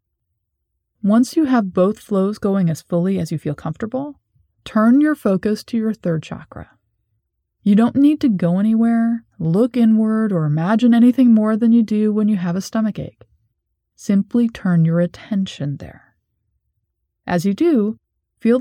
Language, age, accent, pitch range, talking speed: English, 30-49, American, 165-230 Hz, 160 wpm